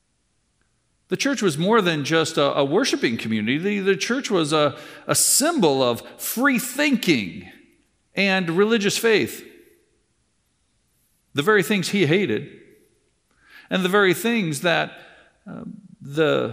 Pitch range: 130-190 Hz